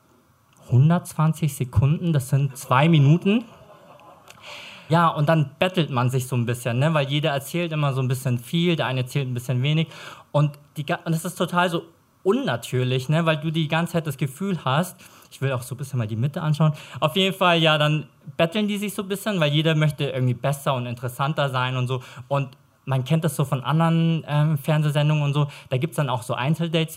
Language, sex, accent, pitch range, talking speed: German, male, German, 130-165 Hz, 215 wpm